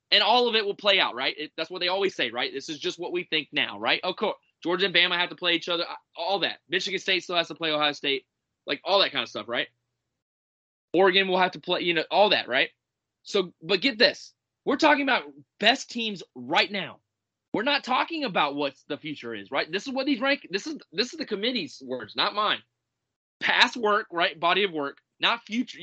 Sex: male